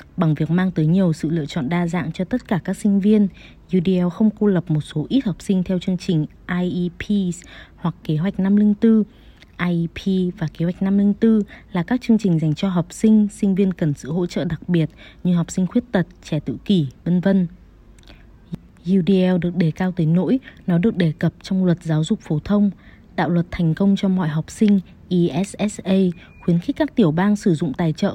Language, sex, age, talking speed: Vietnamese, female, 20-39, 210 wpm